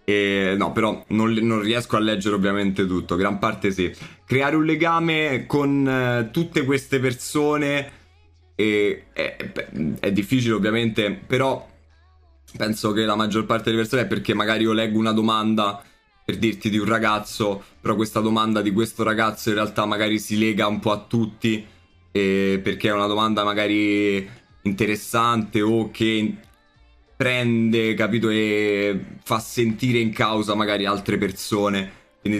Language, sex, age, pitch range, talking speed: Italian, male, 20-39, 100-110 Hz, 150 wpm